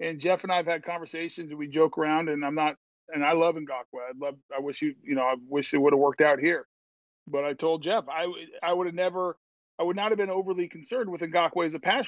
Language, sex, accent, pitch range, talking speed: English, male, American, 160-200 Hz, 270 wpm